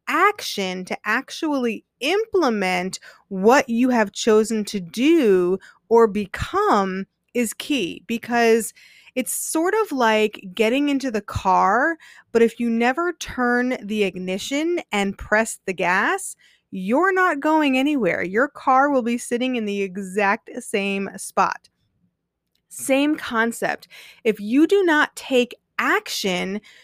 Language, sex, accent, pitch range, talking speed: English, female, American, 205-285 Hz, 125 wpm